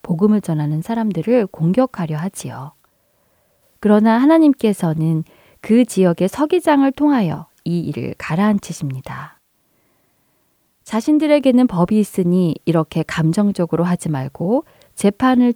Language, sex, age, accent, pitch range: Korean, female, 20-39, native, 165-255 Hz